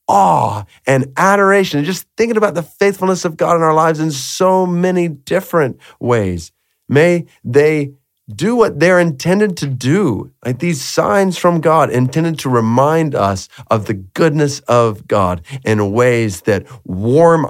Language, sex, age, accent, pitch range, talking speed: English, male, 40-59, American, 105-165 Hz, 150 wpm